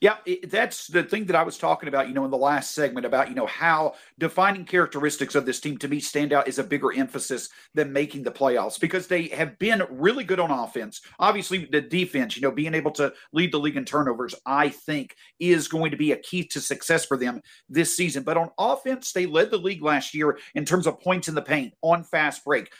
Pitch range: 145-180 Hz